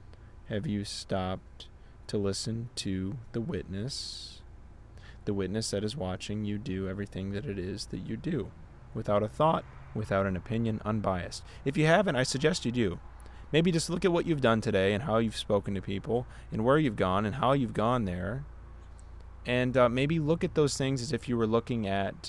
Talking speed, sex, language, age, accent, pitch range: 195 wpm, male, English, 20-39, American, 95-125 Hz